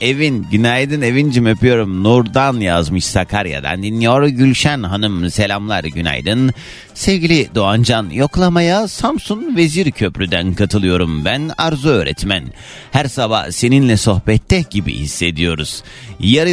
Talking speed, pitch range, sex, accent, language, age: 105 wpm, 100-145 Hz, male, native, Turkish, 30-49